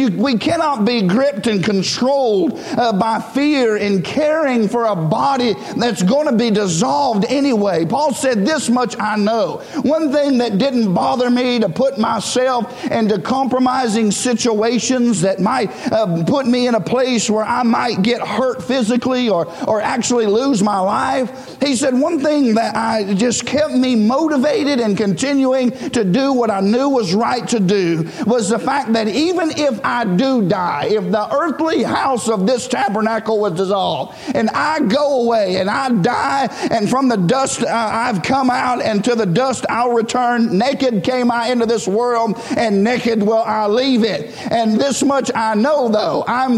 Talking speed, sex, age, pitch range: 175 wpm, male, 50-69, 215-260 Hz